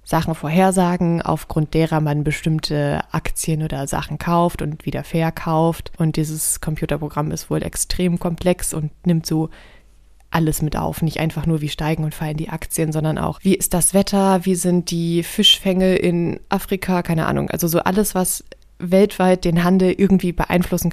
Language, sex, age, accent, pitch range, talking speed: German, female, 20-39, German, 160-185 Hz, 165 wpm